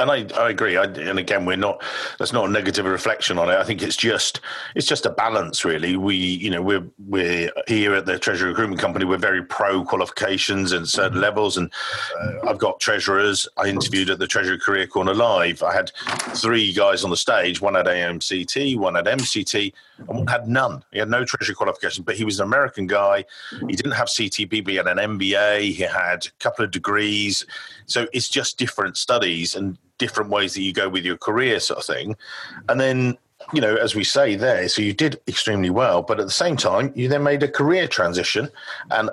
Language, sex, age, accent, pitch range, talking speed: English, male, 40-59, British, 95-130 Hz, 215 wpm